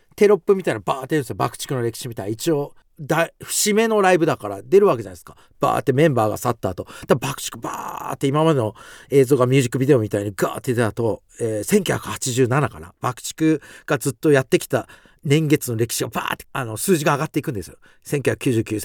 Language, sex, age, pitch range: Japanese, male, 40-59, 115-190 Hz